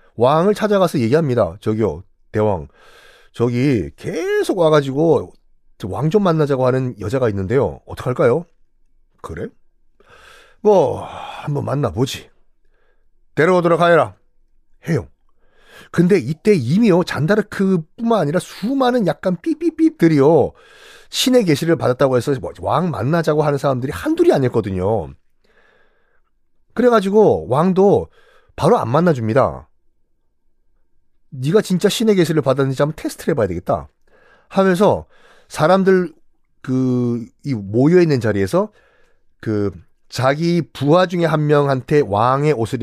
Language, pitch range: Korean, 125-190 Hz